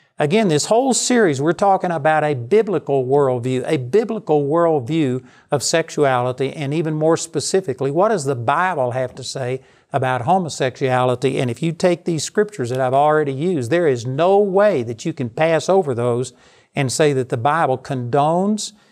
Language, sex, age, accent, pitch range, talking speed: English, male, 60-79, American, 130-170 Hz, 170 wpm